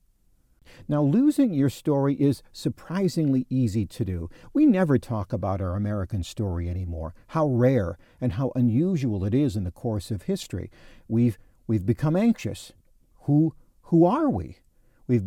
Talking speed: 150 wpm